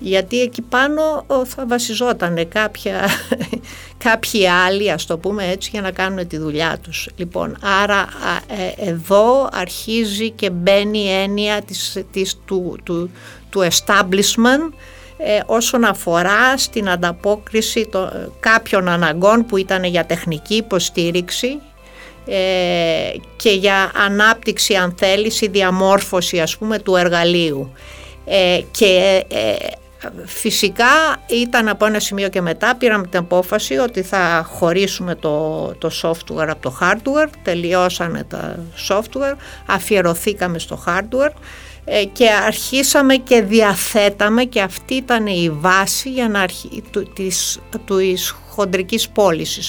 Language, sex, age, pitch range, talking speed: Greek, female, 50-69, 180-225 Hz, 120 wpm